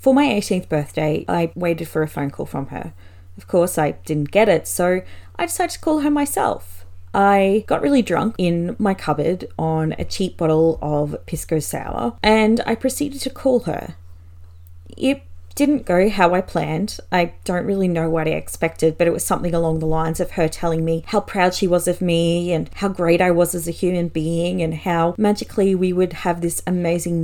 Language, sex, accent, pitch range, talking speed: English, female, Australian, 155-195 Hz, 205 wpm